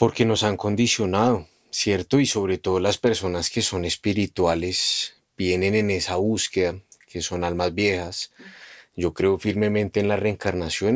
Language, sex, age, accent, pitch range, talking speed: Spanish, male, 30-49, Colombian, 95-110 Hz, 150 wpm